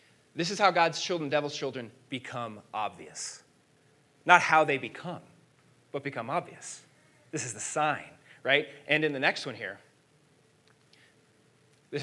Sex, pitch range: male, 135-170 Hz